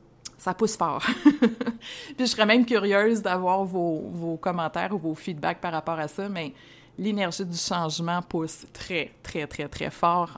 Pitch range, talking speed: 170-220 Hz, 170 wpm